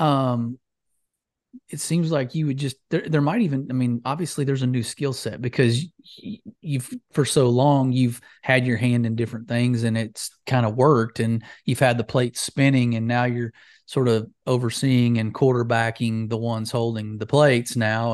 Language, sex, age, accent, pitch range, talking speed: English, male, 30-49, American, 120-145 Hz, 185 wpm